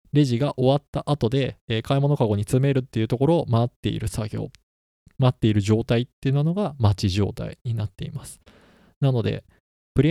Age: 20-39